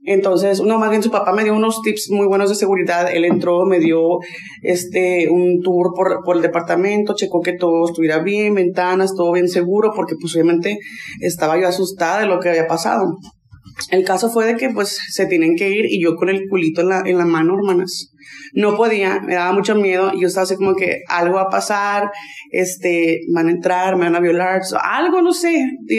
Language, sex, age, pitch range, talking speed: Spanish, female, 20-39, 180-220 Hz, 215 wpm